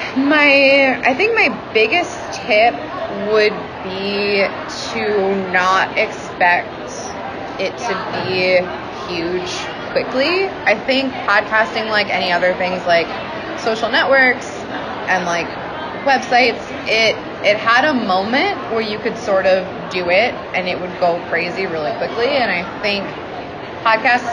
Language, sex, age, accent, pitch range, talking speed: English, female, 20-39, American, 180-230 Hz, 130 wpm